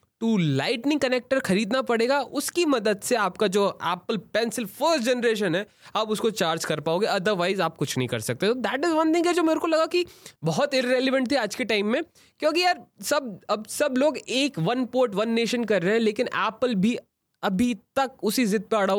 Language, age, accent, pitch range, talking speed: Hindi, 20-39, native, 205-270 Hz, 210 wpm